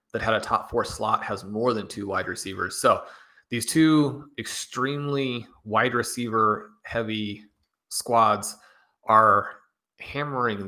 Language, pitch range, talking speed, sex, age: English, 105-130 Hz, 125 wpm, male, 30-49